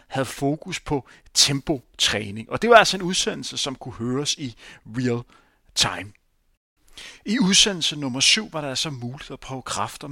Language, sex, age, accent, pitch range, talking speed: Danish, male, 30-49, native, 120-165 Hz, 160 wpm